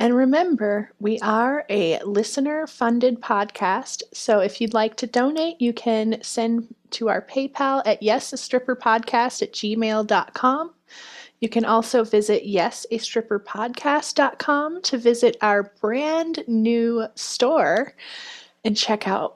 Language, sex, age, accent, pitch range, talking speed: English, female, 30-49, American, 215-270 Hz, 115 wpm